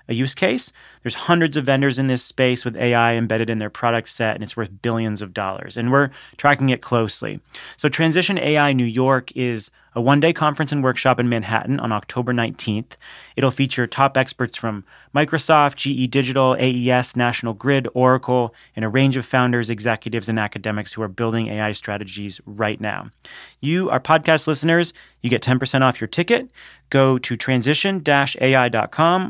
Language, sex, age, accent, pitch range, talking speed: English, male, 30-49, American, 115-140 Hz, 170 wpm